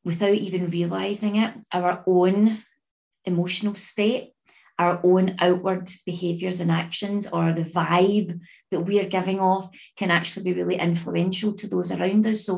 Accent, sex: British, female